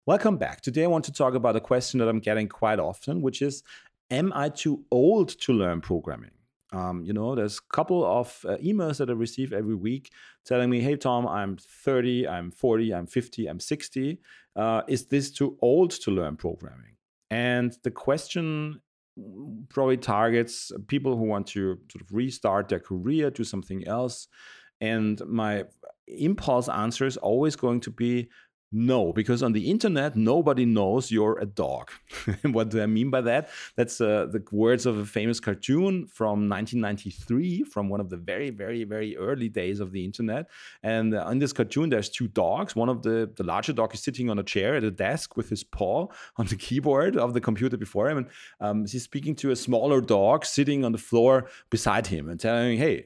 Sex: male